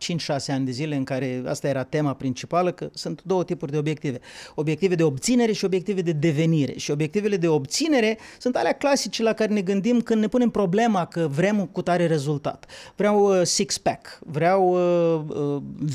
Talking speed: 175 wpm